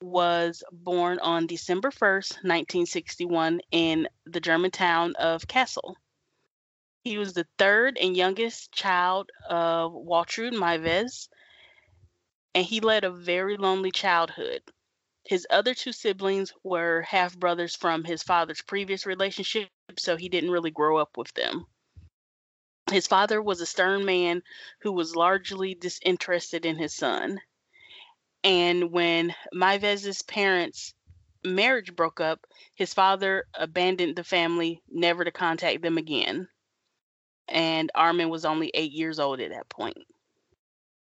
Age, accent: 20-39, American